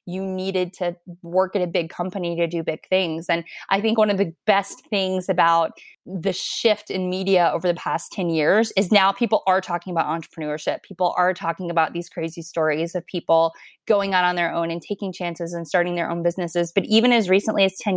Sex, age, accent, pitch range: female, 20-39, American, 170-195 Hz